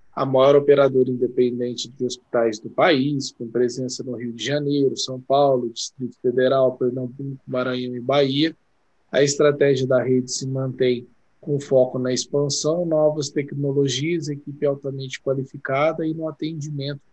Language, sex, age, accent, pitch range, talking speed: Portuguese, male, 20-39, Brazilian, 125-140 Hz, 140 wpm